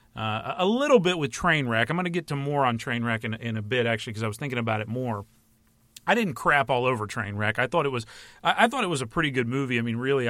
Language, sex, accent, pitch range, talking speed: English, male, American, 115-145 Hz, 280 wpm